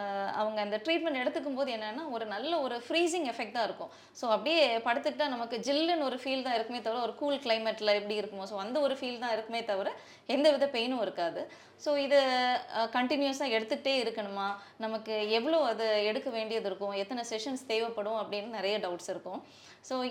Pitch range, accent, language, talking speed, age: 215-285 Hz, native, Tamil, 165 wpm, 20-39